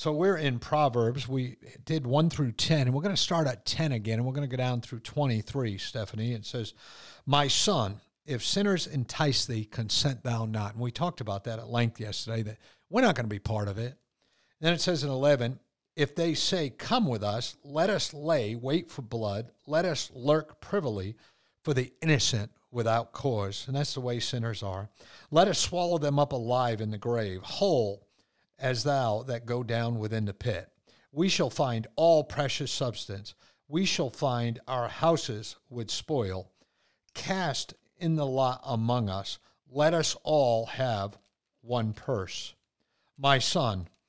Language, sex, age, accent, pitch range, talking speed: English, male, 50-69, American, 110-145 Hz, 180 wpm